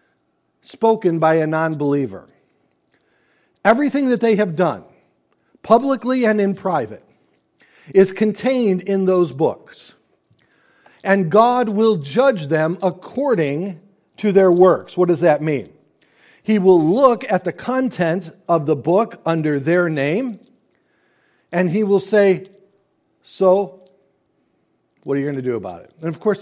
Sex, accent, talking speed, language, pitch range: male, American, 135 wpm, English, 165-215 Hz